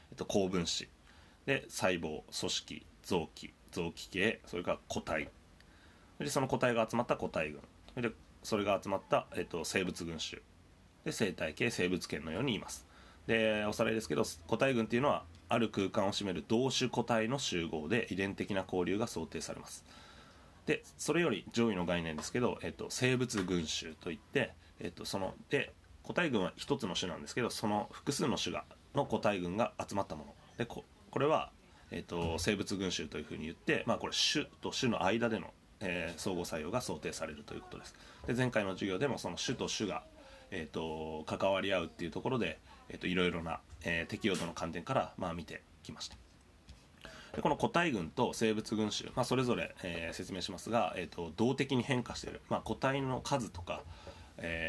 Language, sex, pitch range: Japanese, male, 85-115 Hz